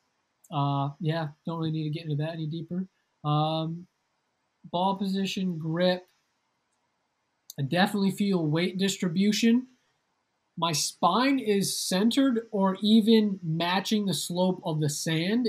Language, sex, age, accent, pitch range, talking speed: English, male, 20-39, American, 155-195 Hz, 125 wpm